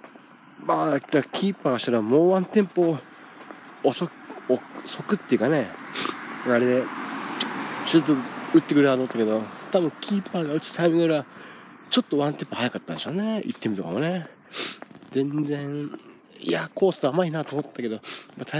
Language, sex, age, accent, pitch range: Japanese, male, 40-59, native, 105-160 Hz